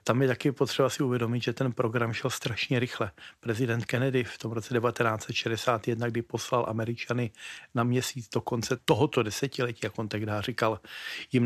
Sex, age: male, 40-59